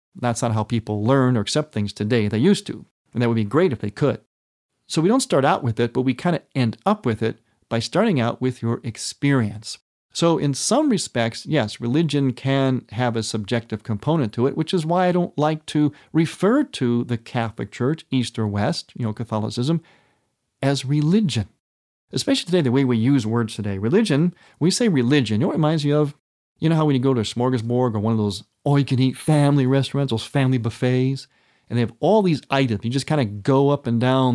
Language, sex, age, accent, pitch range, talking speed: English, male, 40-59, American, 115-145 Hz, 220 wpm